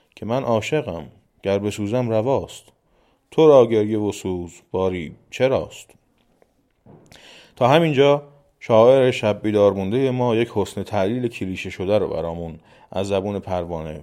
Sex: male